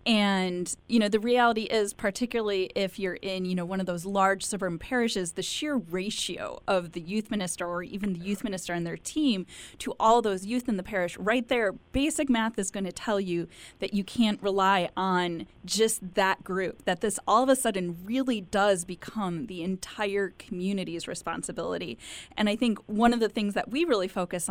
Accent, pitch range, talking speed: American, 185-225 Hz, 195 wpm